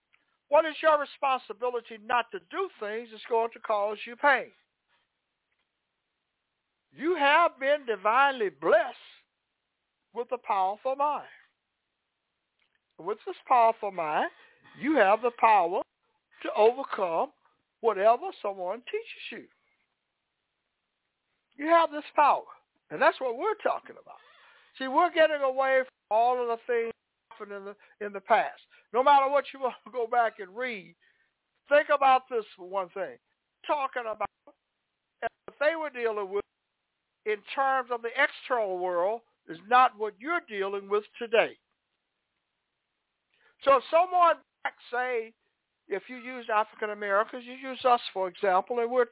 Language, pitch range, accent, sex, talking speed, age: English, 210-275 Hz, American, male, 140 wpm, 60-79